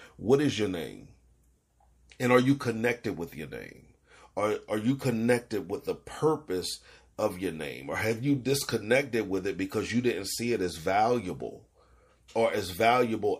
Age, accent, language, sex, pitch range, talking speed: 40-59, American, English, male, 95-125 Hz, 165 wpm